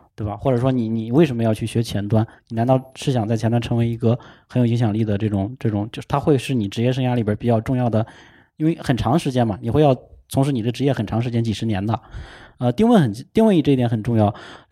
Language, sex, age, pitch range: Chinese, male, 20-39, 110-130 Hz